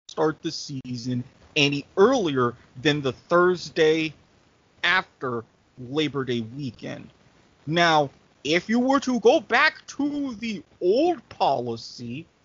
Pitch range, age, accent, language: 145-180 Hz, 30-49, American, English